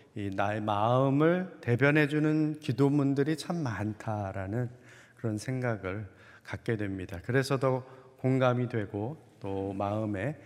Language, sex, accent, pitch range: Korean, male, native, 105-140 Hz